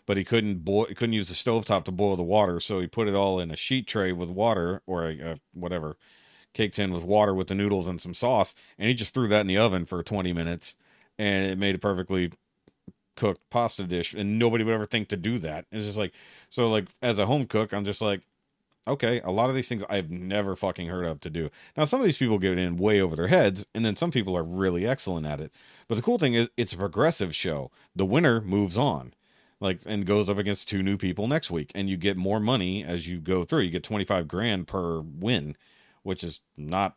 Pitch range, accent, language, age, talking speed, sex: 90-110 Hz, American, English, 40-59, 245 wpm, male